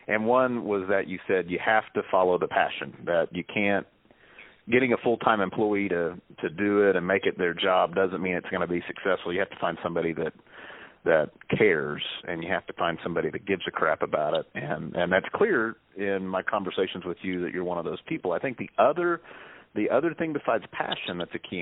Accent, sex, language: American, male, English